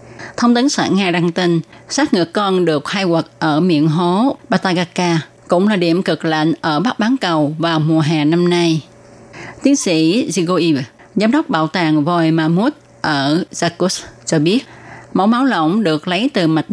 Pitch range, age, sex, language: 155-195 Hz, 20-39, female, Vietnamese